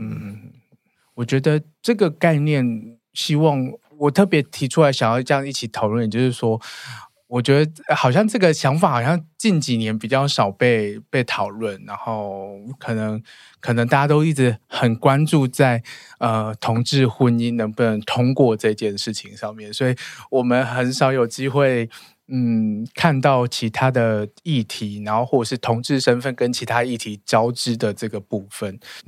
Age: 20-39